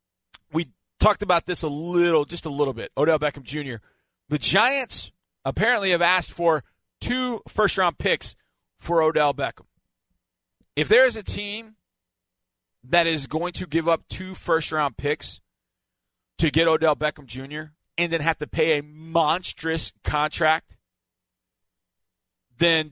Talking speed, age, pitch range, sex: 140 wpm, 40-59, 120-200 Hz, male